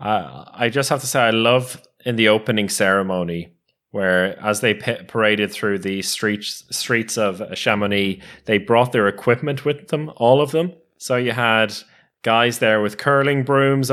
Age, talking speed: 20-39, 170 wpm